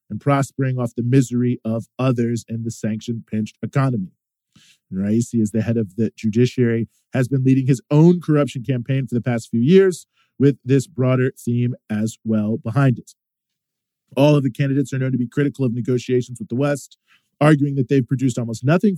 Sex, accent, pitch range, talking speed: male, American, 120-145 Hz, 185 wpm